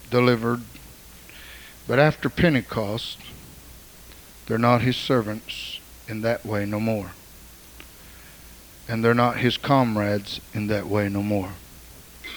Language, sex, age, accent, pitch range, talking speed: English, male, 60-79, American, 95-155 Hz, 110 wpm